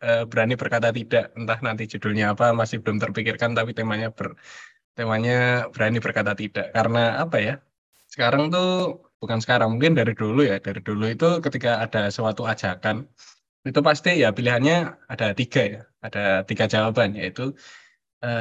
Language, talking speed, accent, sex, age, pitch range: Indonesian, 155 wpm, native, male, 10-29, 115-155 Hz